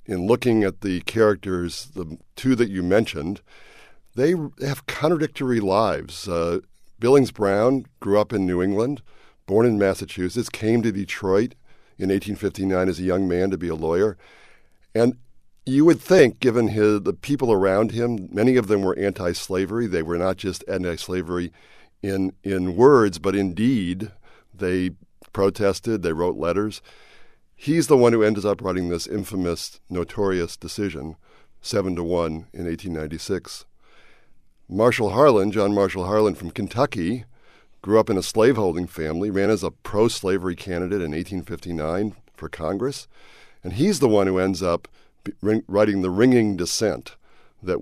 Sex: male